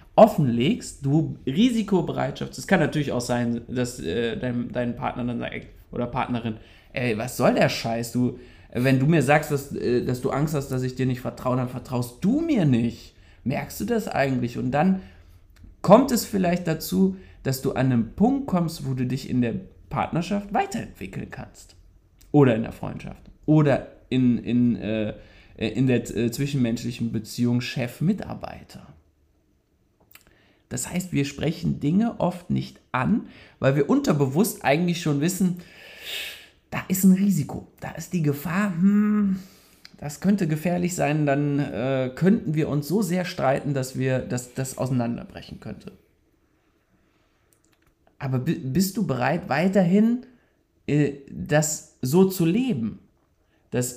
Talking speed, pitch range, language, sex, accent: 145 wpm, 120-175 Hz, German, male, German